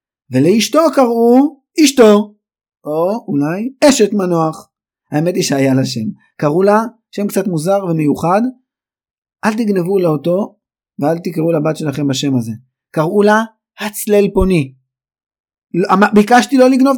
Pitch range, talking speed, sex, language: 140-205 Hz, 125 wpm, male, Hebrew